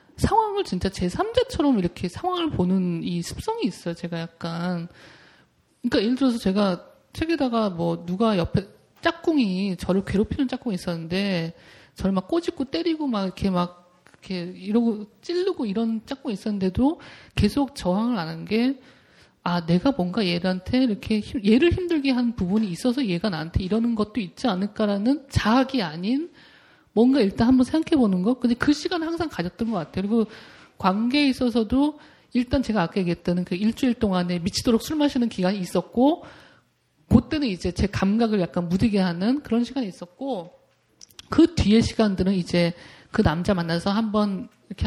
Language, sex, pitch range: Korean, male, 185-275 Hz